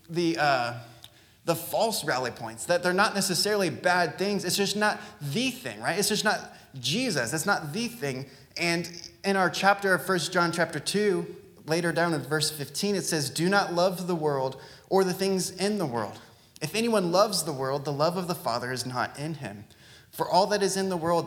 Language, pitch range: English, 135-180 Hz